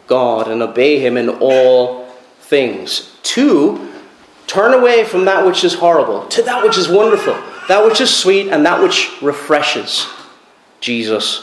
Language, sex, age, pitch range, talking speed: English, male, 30-49, 135-215 Hz, 150 wpm